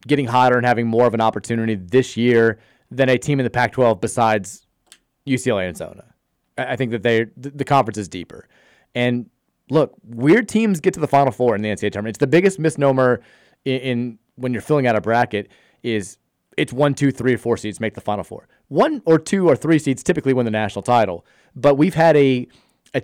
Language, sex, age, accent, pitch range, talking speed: English, male, 30-49, American, 110-140 Hz, 210 wpm